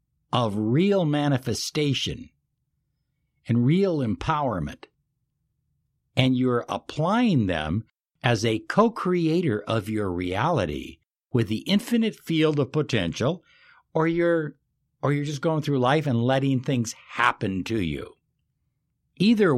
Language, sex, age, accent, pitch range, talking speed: English, male, 60-79, American, 110-145 Hz, 115 wpm